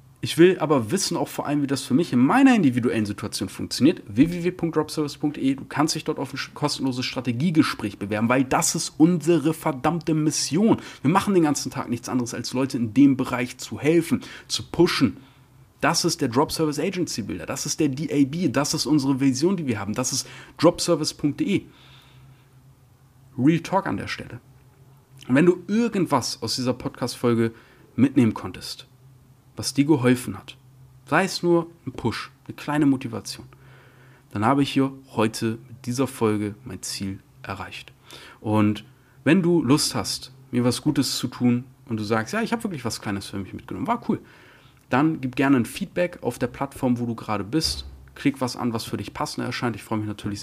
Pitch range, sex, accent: 120-150 Hz, male, German